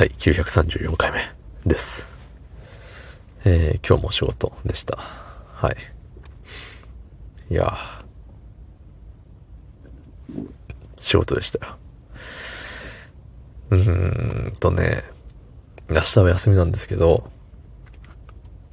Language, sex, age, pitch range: Japanese, male, 40-59, 80-110 Hz